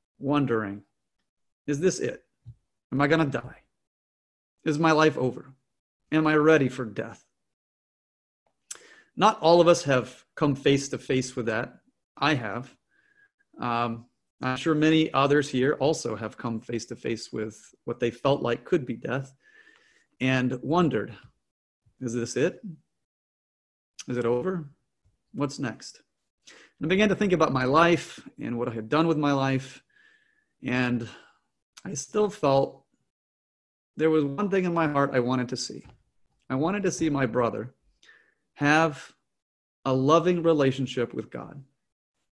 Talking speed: 145 wpm